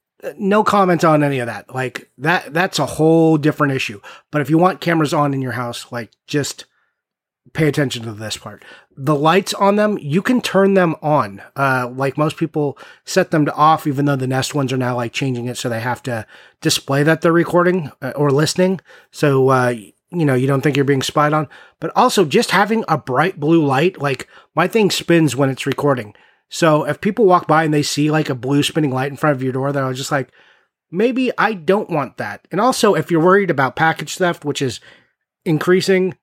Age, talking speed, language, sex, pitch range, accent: 30-49, 215 wpm, English, male, 135-175 Hz, American